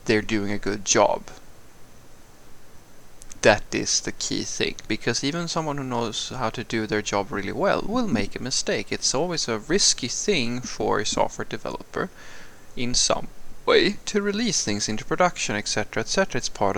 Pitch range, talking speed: 105-135 Hz, 170 wpm